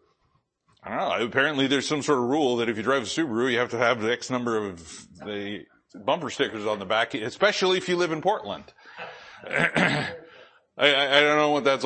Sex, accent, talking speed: male, American, 215 wpm